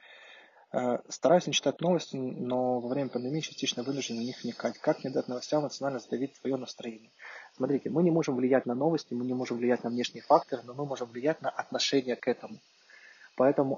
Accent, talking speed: native, 190 wpm